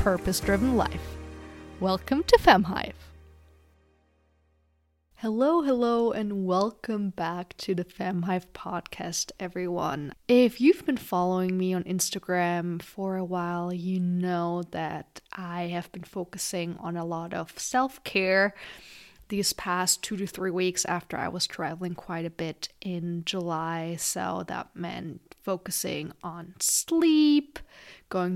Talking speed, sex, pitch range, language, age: 130 wpm, female, 175-200 Hz, English, 20-39